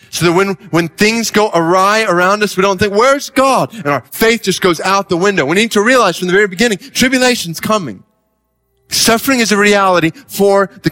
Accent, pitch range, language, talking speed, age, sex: American, 135-195 Hz, English, 210 wpm, 30-49, male